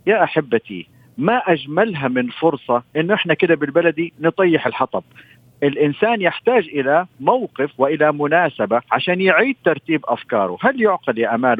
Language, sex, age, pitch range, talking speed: Arabic, male, 50-69, 130-190 Hz, 135 wpm